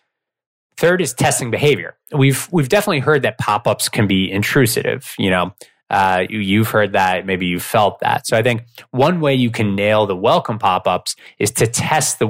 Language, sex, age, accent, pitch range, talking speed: English, male, 20-39, American, 105-140 Hz, 190 wpm